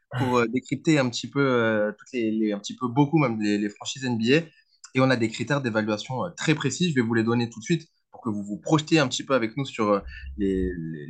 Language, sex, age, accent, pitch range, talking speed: French, male, 20-39, French, 105-140 Hz, 265 wpm